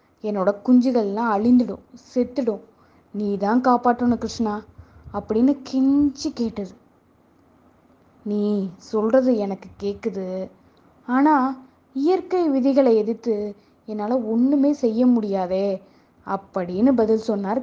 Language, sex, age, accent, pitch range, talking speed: Tamil, female, 20-39, native, 205-260 Hz, 85 wpm